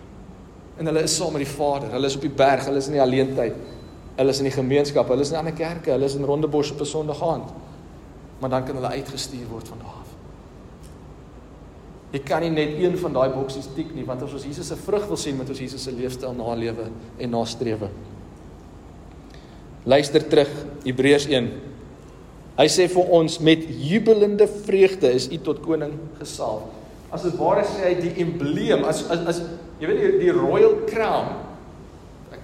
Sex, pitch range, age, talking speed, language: male, 120-165 Hz, 40-59, 185 wpm, English